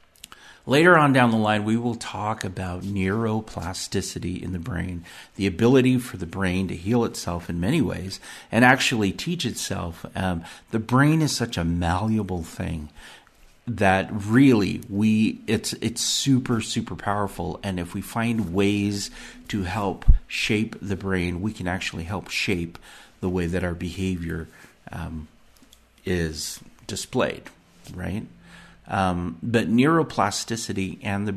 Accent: American